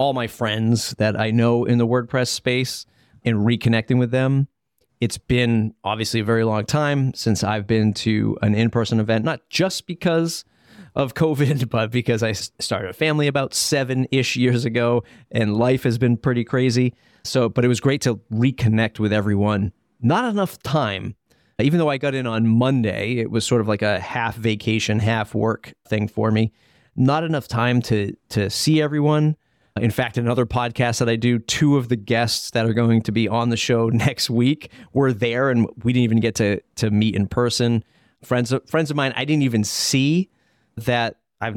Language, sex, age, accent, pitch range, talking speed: English, male, 30-49, American, 110-130 Hz, 190 wpm